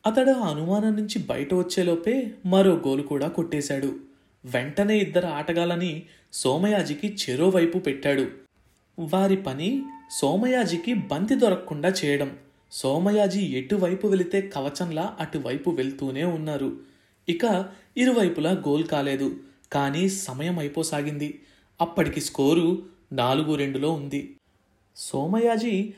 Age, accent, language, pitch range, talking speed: 30-49, native, Telugu, 145-200 Hz, 95 wpm